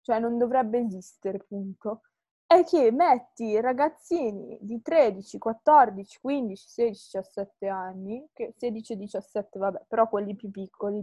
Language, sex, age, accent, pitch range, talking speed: Italian, female, 20-39, native, 220-300 Hz, 130 wpm